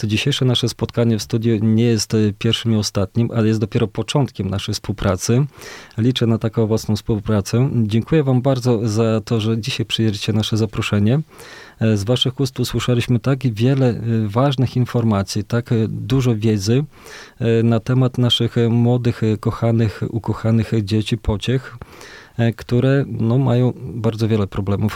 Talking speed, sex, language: 130 wpm, male, Polish